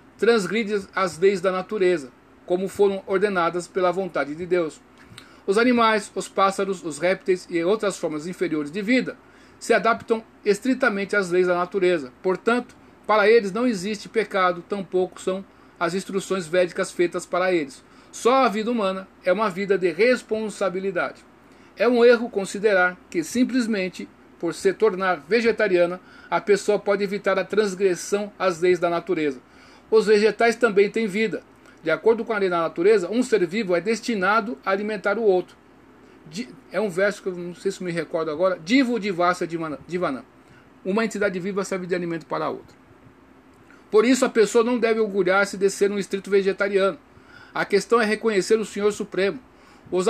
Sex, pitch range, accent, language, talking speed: male, 180-220 Hz, Brazilian, Portuguese, 170 wpm